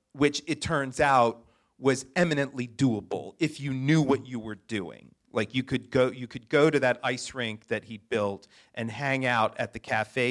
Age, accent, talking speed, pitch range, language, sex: 40-59, American, 200 wpm, 115-145 Hz, English, male